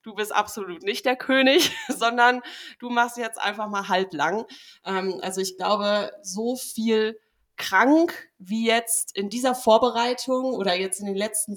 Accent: German